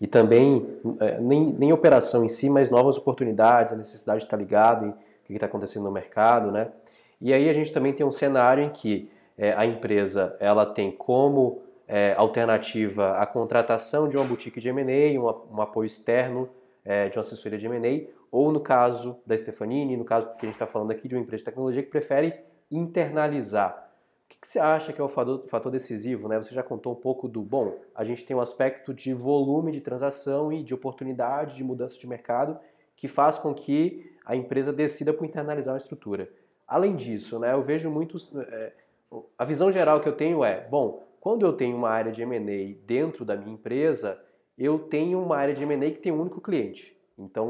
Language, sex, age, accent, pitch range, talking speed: Portuguese, male, 20-39, Brazilian, 115-145 Hz, 205 wpm